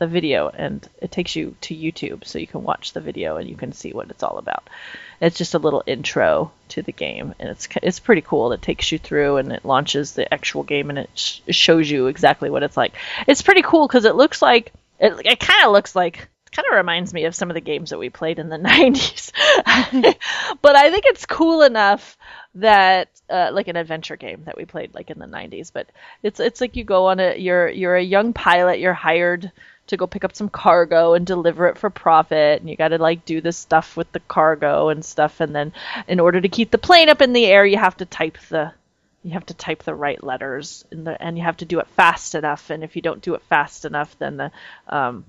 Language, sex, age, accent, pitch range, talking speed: English, female, 30-49, American, 160-200 Hz, 245 wpm